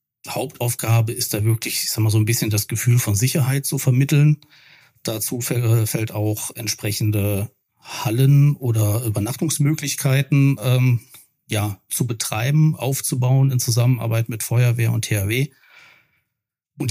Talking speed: 125 wpm